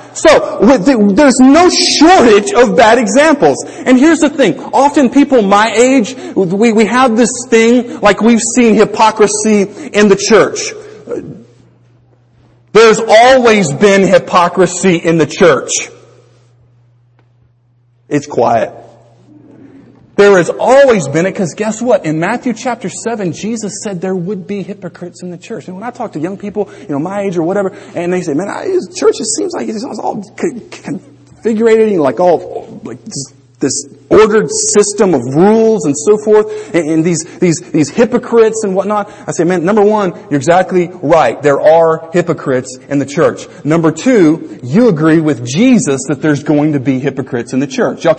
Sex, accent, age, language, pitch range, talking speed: male, American, 40-59, English, 155-230 Hz, 165 wpm